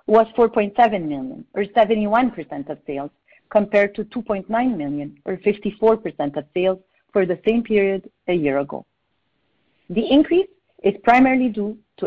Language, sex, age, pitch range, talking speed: English, female, 40-59, 165-230 Hz, 140 wpm